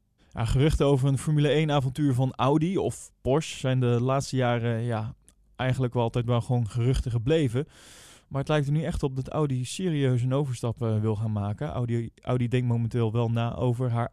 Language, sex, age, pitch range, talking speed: Dutch, male, 20-39, 120-160 Hz, 190 wpm